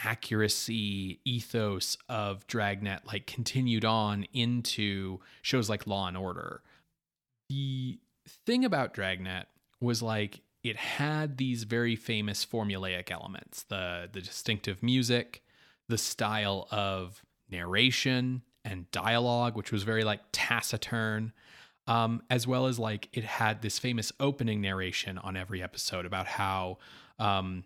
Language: English